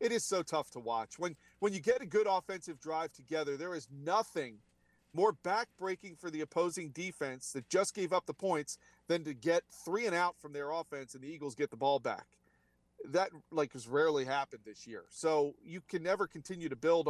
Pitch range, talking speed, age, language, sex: 145-190 Hz, 210 wpm, 40-59, English, male